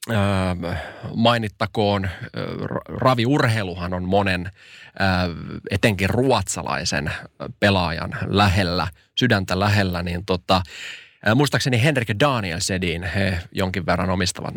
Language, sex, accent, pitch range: Finnish, male, native, 95-120 Hz